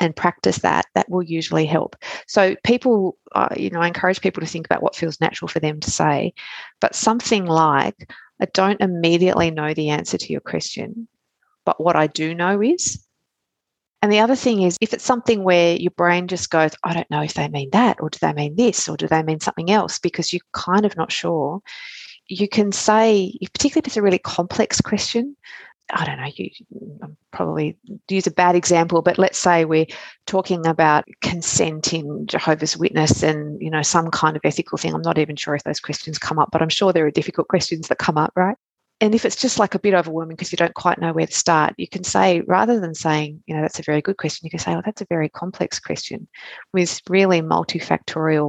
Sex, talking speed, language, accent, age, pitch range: female, 220 wpm, English, Australian, 30-49, 160-205 Hz